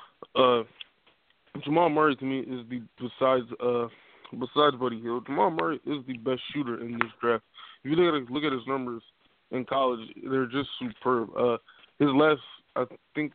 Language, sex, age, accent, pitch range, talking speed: English, male, 20-39, American, 120-140 Hz, 175 wpm